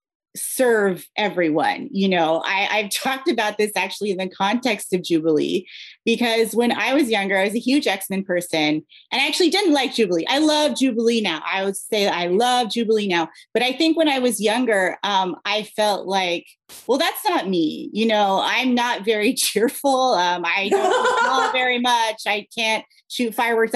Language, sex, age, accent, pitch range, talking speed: English, female, 30-49, American, 190-250 Hz, 185 wpm